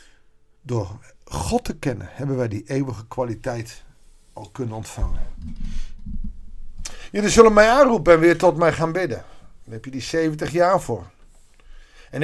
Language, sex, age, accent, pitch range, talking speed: Dutch, male, 50-69, Dutch, 120-175 Hz, 145 wpm